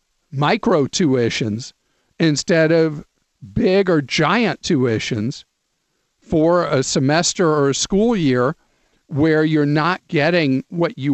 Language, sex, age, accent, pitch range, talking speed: English, male, 50-69, American, 135-175 Hz, 115 wpm